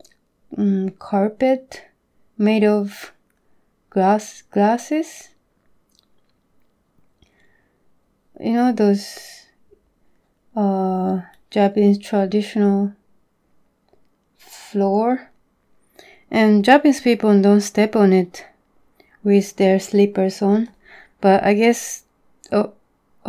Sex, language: female, Japanese